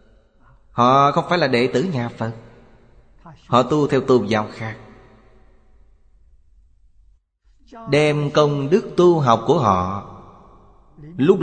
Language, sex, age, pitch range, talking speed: Vietnamese, male, 20-39, 100-130 Hz, 115 wpm